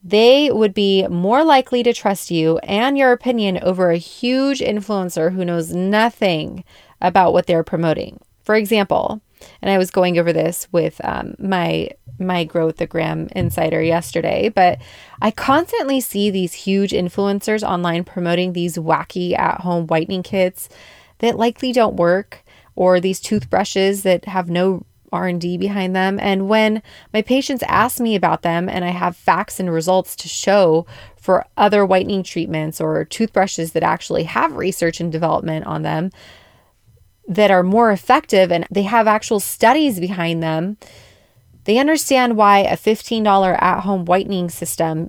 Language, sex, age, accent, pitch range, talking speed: English, female, 20-39, American, 170-215 Hz, 150 wpm